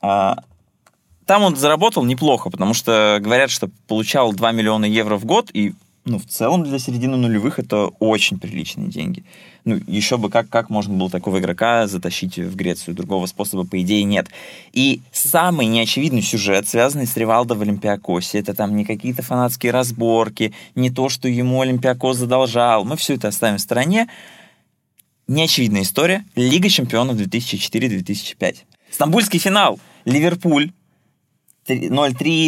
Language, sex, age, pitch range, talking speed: Russian, male, 20-39, 105-130 Hz, 145 wpm